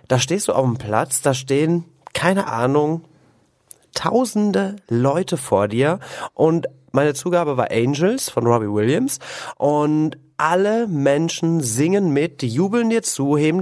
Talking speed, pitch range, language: 140 wpm, 125-160 Hz, German